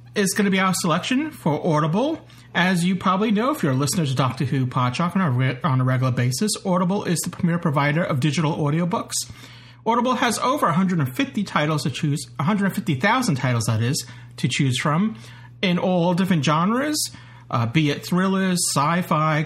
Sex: male